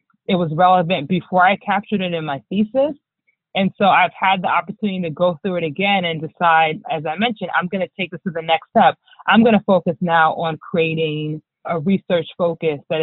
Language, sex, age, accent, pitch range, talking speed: English, female, 30-49, American, 160-215 Hz, 210 wpm